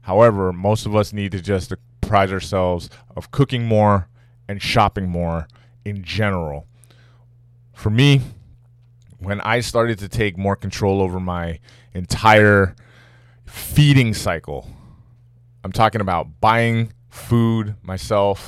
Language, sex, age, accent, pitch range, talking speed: English, male, 20-39, American, 95-120 Hz, 120 wpm